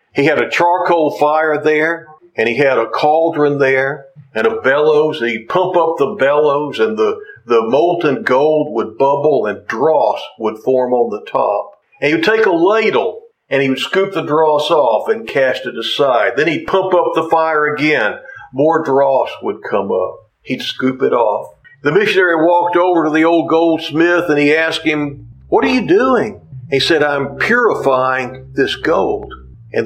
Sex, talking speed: male, 180 wpm